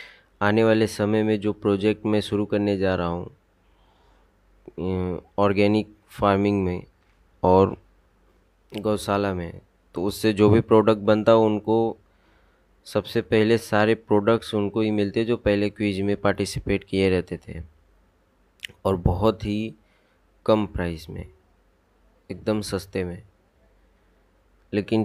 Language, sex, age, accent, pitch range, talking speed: Hindi, male, 20-39, native, 90-110 Hz, 120 wpm